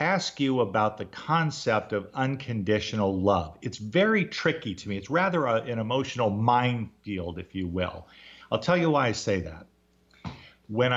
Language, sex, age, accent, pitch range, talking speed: English, male, 50-69, American, 100-130 Hz, 160 wpm